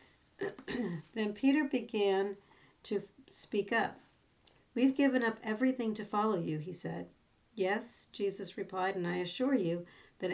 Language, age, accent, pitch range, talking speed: English, 50-69, American, 175-215 Hz, 135 wpm